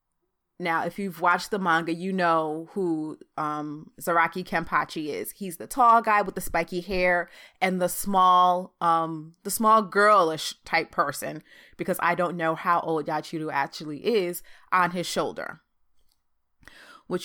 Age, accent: 20-39, American